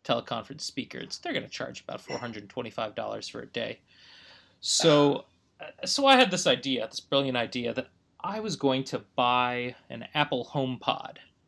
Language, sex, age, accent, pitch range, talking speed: English, male, 30-49, American, 115-135 Hz, 150 wpm